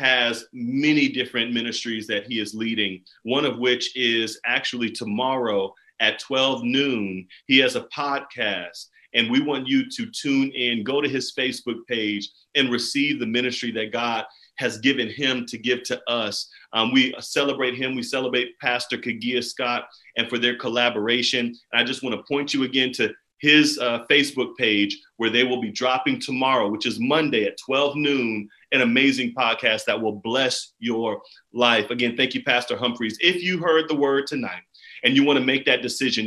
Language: English